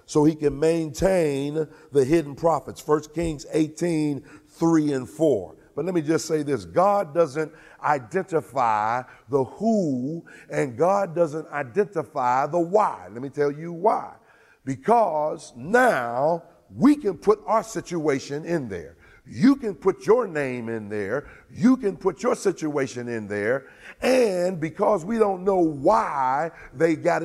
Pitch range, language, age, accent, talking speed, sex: 145-190 Hz, English, 50-69, American, 145 wpm, male